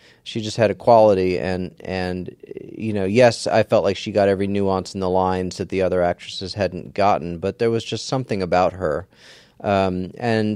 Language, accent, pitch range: English, American, 90-105 Hz